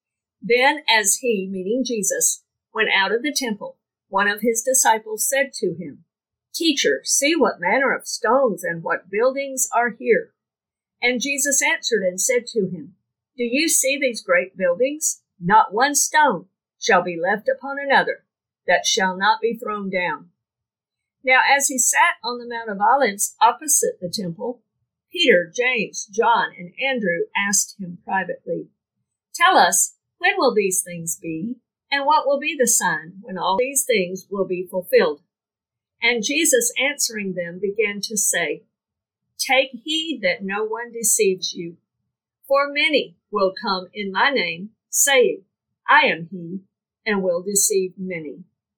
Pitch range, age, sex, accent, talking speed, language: 190-280 Hz, 50-69, female, American, 155 wpm, English